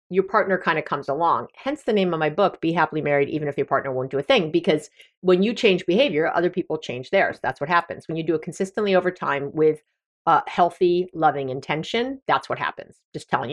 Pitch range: 160-230 Hz